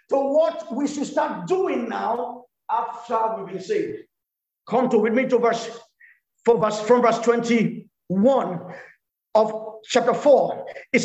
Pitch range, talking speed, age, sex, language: 235-315 Hz, 135 wpm, 50-69, male, English